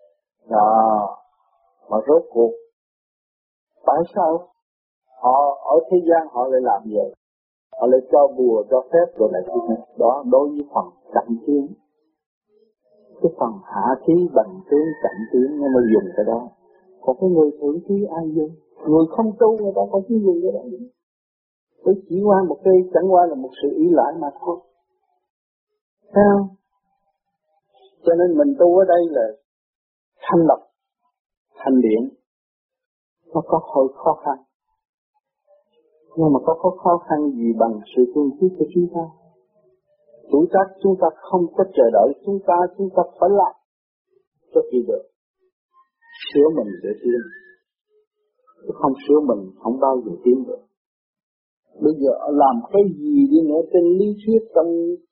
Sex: male